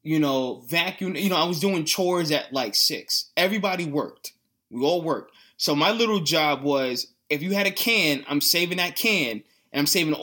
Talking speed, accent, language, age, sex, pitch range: 200 wpm, American, English, 20-39, male, 140-170 Hz